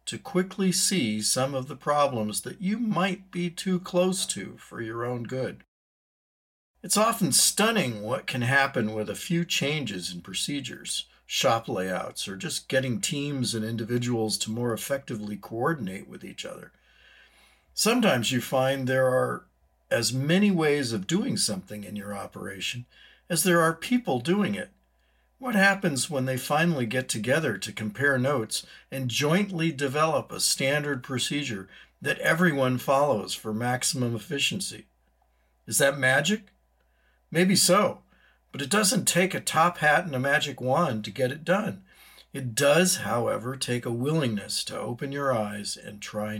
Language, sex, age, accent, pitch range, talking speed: English, male, 50-69, American, 105-160 Hz, 155 wpm